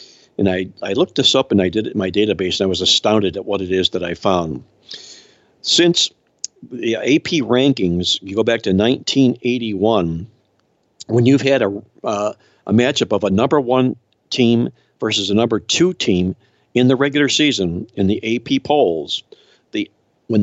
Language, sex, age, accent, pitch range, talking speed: English, male, 60-79, American, 95-125 Hz, 175 wpm